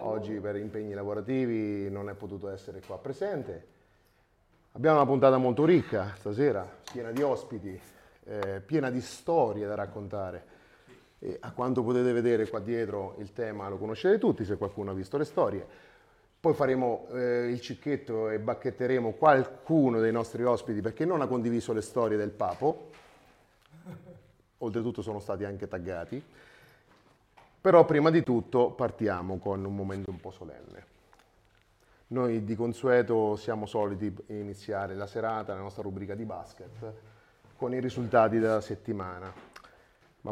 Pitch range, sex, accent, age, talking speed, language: 105-125 Hz, male, native, 30-49, 145 wpm, Italian